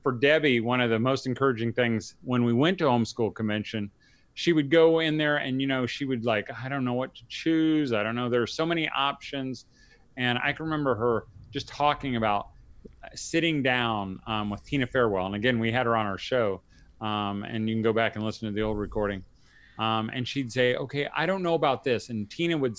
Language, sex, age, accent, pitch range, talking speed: English, male, 30-49, American, 110-140 Hz, 225 wpm